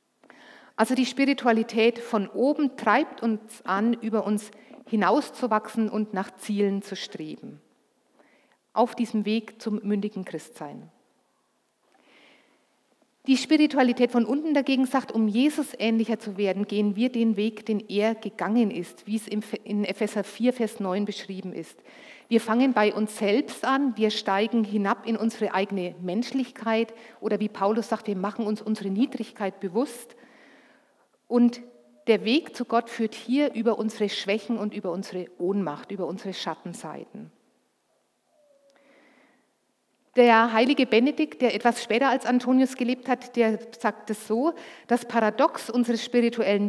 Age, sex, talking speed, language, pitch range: 50-69, female, 140 wpm, German, 205-245 Hz